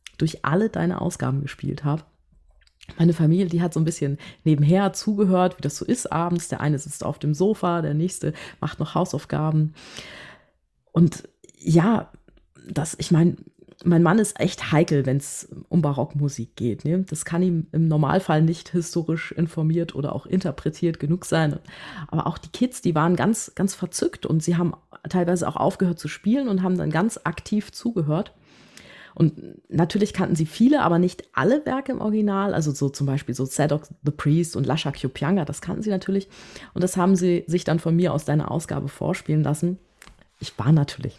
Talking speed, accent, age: 180 wpm, German, 30-49